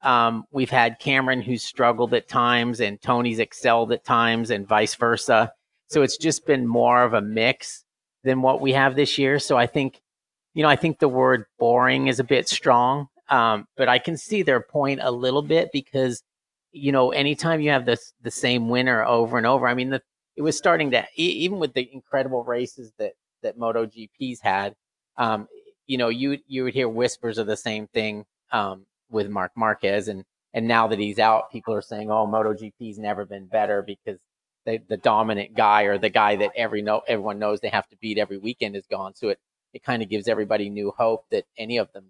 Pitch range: 110-135 Hz